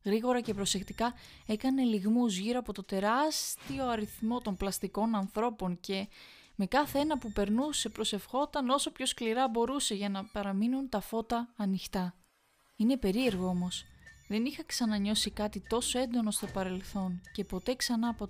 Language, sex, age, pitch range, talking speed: Greek, female, 20-39, 195-235 Hz, 150 wpm